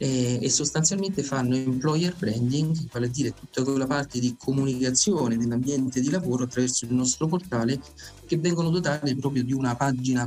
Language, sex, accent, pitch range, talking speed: Italian, male, native, 120-145 Hz, 160 wpm